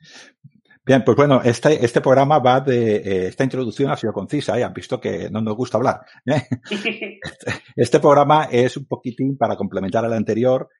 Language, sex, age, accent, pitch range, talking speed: Spanish, male, 50-69, Spanish, 100-125 Hz, 180 wpm